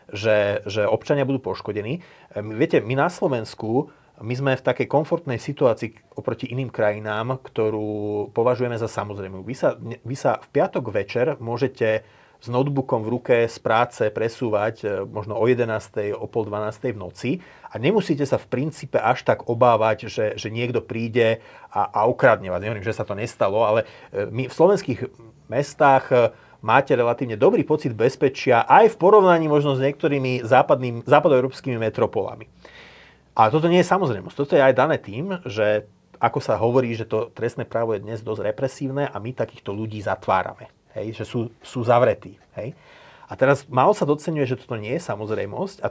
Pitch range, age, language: 110-140 Hz, 30-49, Slovak